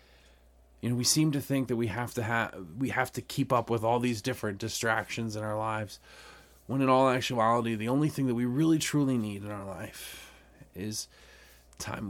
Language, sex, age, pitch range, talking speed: English, male, 30-49, 90-120 Hz, 205 wpm